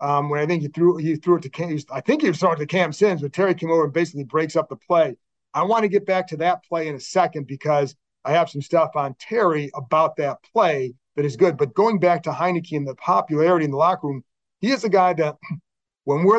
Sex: male